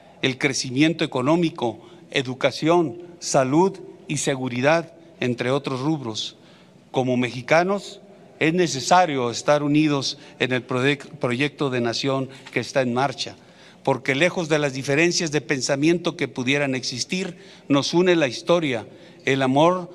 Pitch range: 130-170 Hz